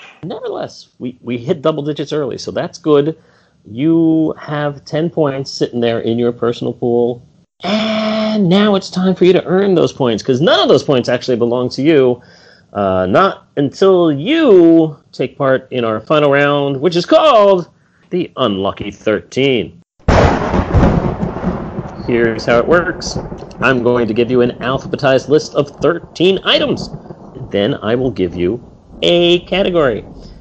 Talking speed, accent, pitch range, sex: 150 wpm, American, 125-180 Hz, male